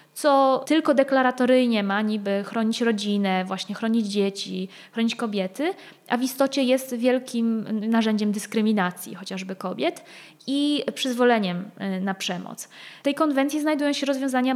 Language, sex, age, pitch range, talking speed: Polish, female, 20-39, 210-265 Hz, 130 wpm